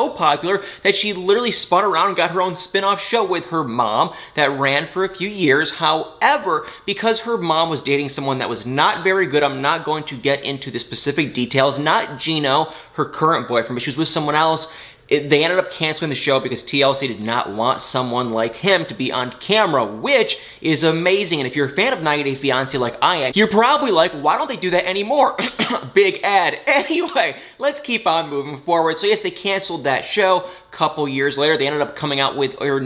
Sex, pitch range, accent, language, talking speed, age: male, 135-180 Hz, American, English, 215 wpm, 20-39